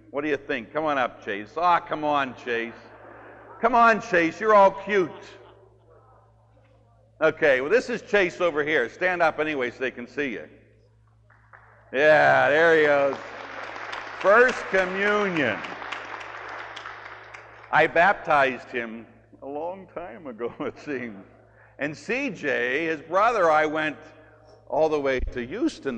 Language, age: English, 60-79